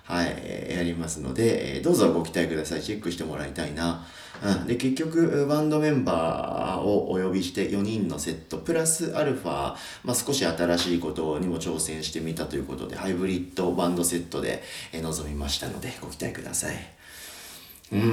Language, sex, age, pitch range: Japanese, male, 40-59, 80-100 Hz